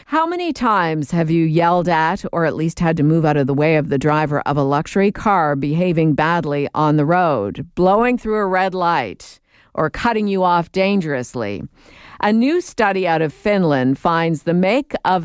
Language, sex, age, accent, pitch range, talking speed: English, female, 50-69, American, 150-195 Hz, 195 wpm